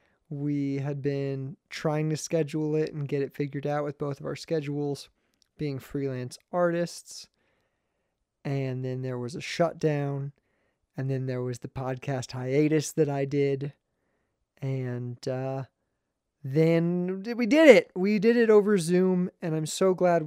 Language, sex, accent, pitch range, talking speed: English, male, American, 140-165 Hz, 150 wpm